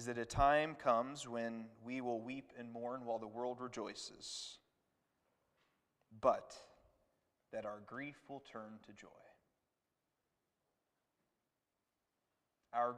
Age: 30-49